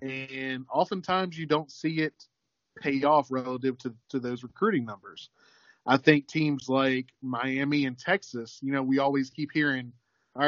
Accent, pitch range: American, 125-145 Hz